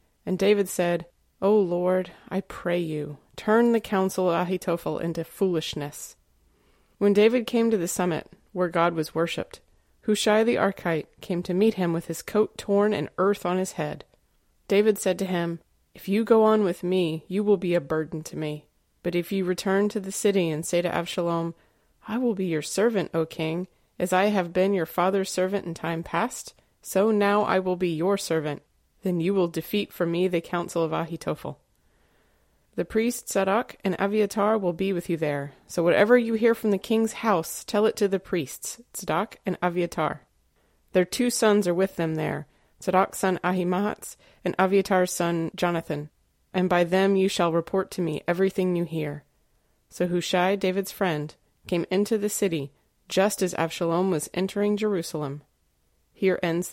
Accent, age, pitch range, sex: American, 30-49, 170-200 Hz, female